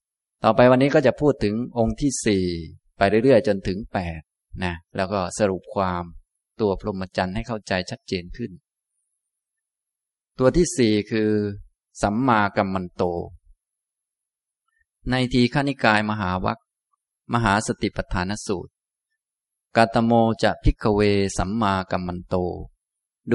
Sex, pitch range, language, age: male, 95-115 Hz, Thai, 20-39